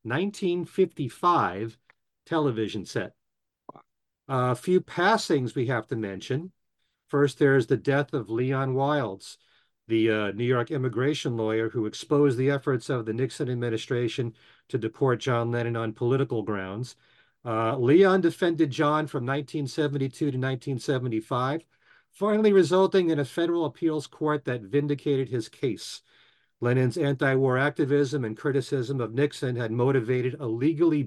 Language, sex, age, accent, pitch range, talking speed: English, male, 40-59, American, 120-150 Hz, 130 wpm